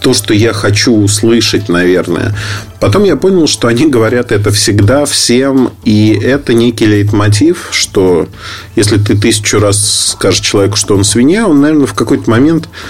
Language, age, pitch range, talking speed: Russian, 40-59, 105-140 Hz, 160 wpm